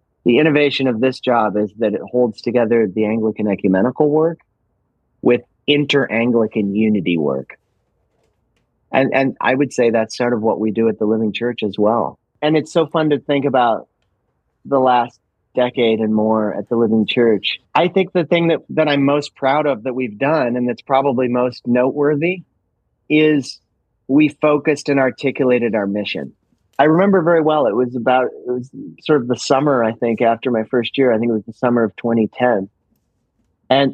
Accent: American